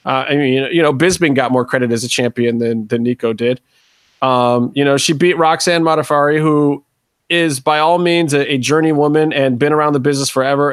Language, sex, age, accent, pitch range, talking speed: English, male, 30-49, American, 135-175 Hz, 220 wpm